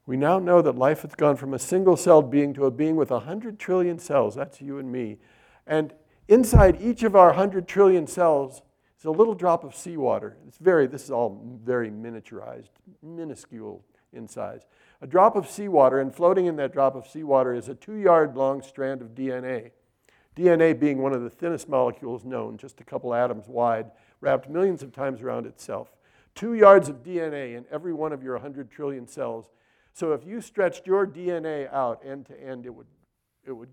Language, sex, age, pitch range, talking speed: English, male, 60-79, 120-155 Hz, 190 wpm